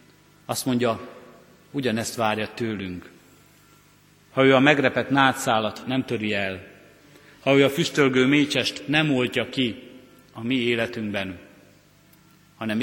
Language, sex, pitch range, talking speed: Hungarian, male, 115-140 Hz, 115 wpm